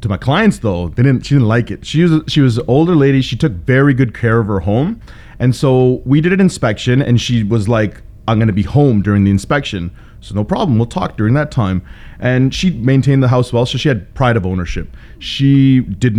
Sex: male